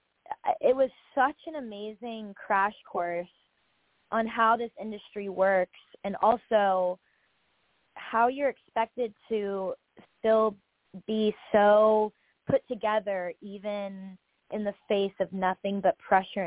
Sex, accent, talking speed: female, American, 115 wpm